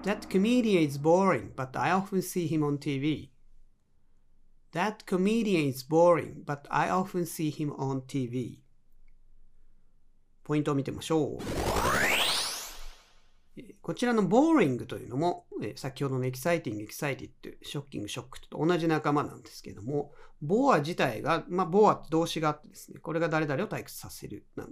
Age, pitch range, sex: 40-59, 145-195 Hz, male